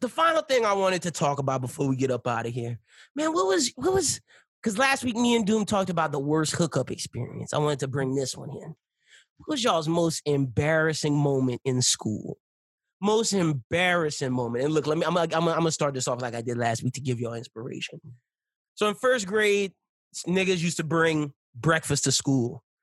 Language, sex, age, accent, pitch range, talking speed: English, male, 20-39, American, 140-195 Hz, 215 wpm